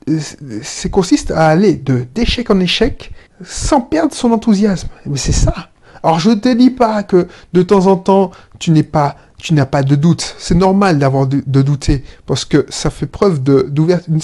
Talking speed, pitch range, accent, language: 195 wpm, 140-195 Hz, French, French